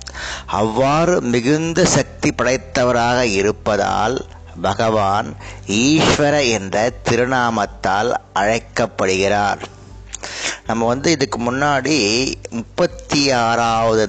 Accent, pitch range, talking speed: native, 100-130 Hz, 70 wpm